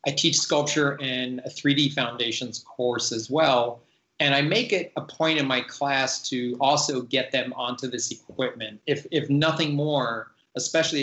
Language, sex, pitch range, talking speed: English, male, 120-145 Hz, 170 wpm